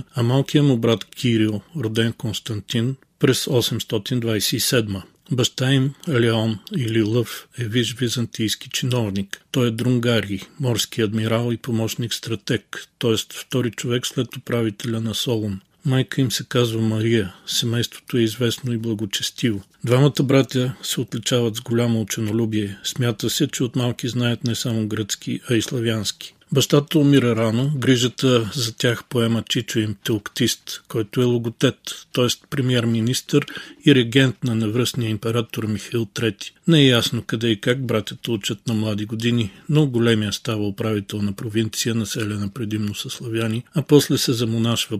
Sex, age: male, 40-59